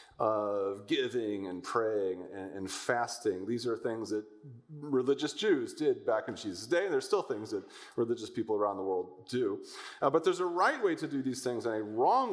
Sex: male